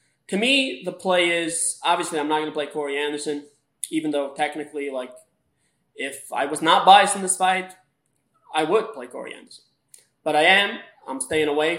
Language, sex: English, male